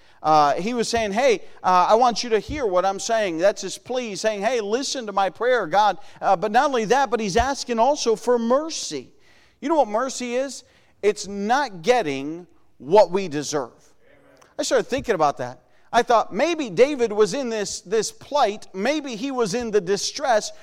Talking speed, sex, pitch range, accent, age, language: 190 wpm, male, 175-240 Hz, American, 40-59, English